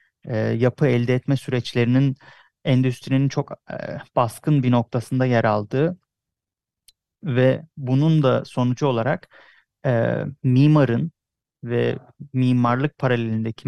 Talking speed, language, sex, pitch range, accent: 100 wpm, English, male, 120-135 Hz, Turkish